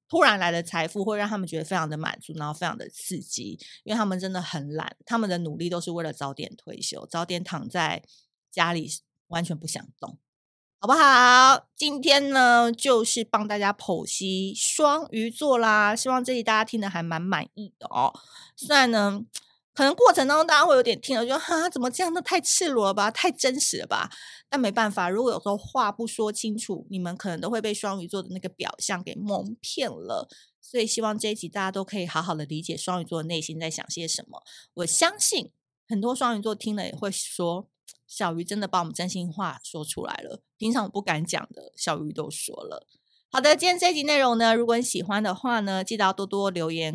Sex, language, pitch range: female, Chinese, 175-235 Hz